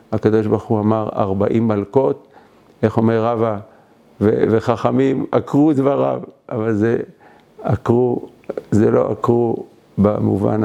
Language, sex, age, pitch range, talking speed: Hebrew, male, 50-69, 105-115 Hz, 115 wpm